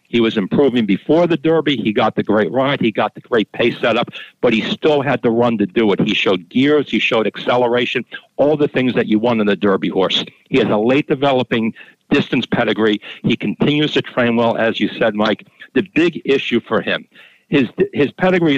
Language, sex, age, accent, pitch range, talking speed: English, male, 60-79, American, 110-145 Hz, 215 wpm